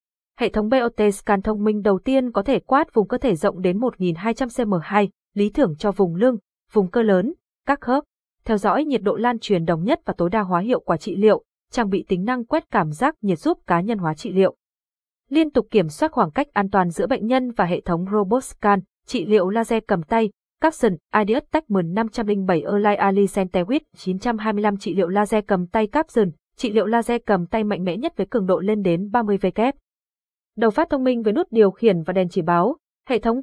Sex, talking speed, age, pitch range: female, 215 wpm, 20-39, 195-245 Hz